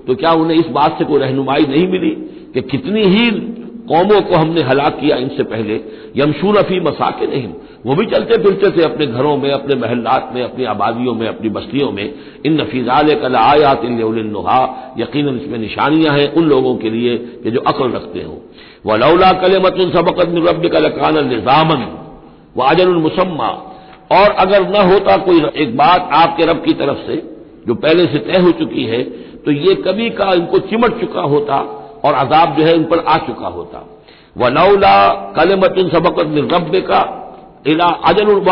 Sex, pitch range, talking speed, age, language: male, 140-200 Hz, 175 wpm, 60-79, Hindi